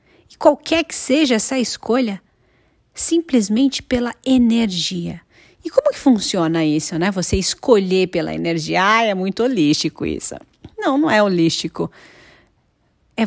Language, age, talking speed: Portuguese, 40-59, 125 wpm